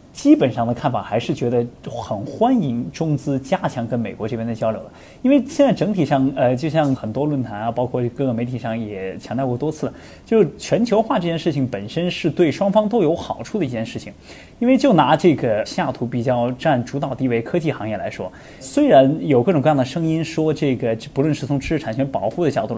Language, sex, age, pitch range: Chinese, male, 20-39, 125-180 Hz